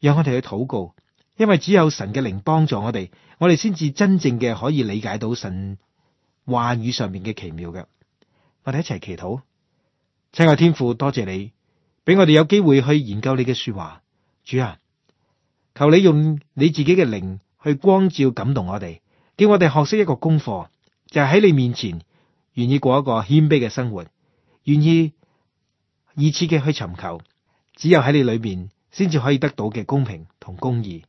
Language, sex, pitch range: Chinese, male, 110-155 Hz